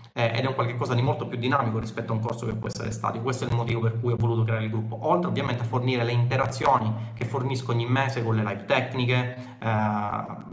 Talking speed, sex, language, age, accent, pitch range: 240 wpm, male, Italian, 30-49, native, 115-140 Hz